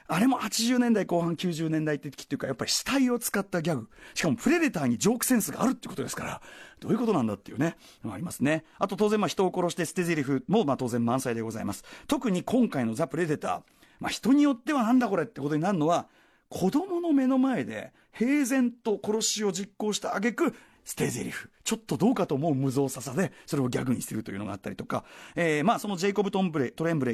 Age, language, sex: 40-59, Japanese, male